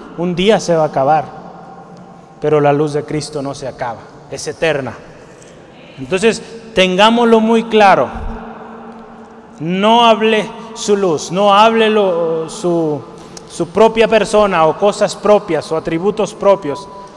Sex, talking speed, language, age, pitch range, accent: male, 130 wpm, Spanish, 30-49, 160-205 Hz, Mexican